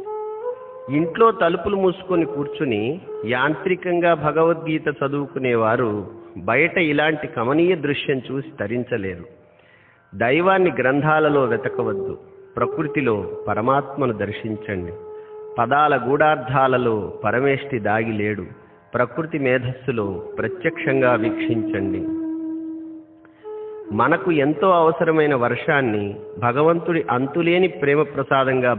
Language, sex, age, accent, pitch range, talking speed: Telugu, male, 50-69, native, 125-190 Hz, 70 wpm